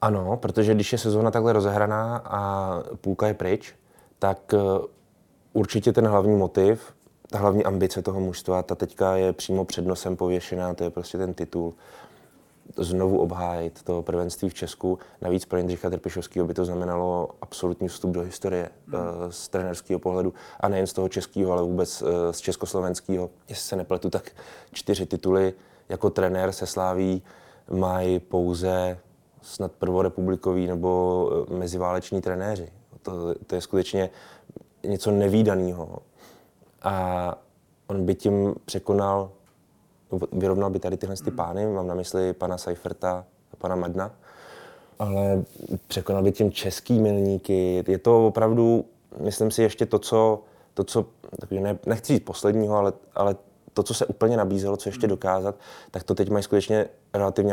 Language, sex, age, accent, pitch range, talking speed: Czech, male, 20-39, native, 90-100 Hz, 145 wpm